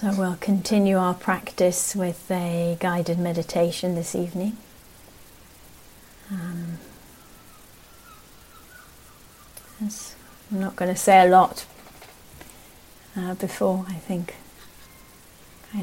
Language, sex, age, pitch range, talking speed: English, female, 40-59, 165-185 Hz, 95 wpm